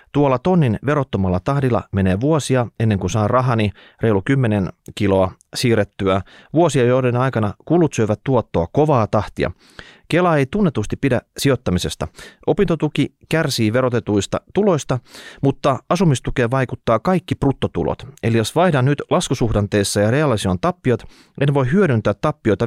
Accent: native